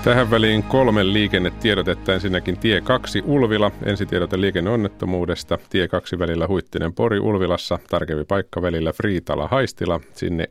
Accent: native